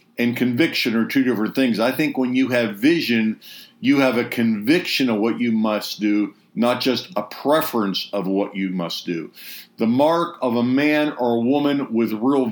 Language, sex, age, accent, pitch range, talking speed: English, male, 50-69, American, 115-140 Hz, 190 wpm